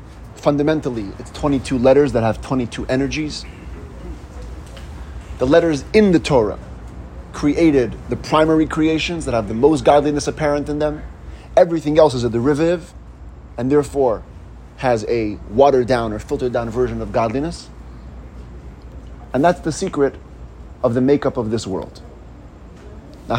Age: 30-49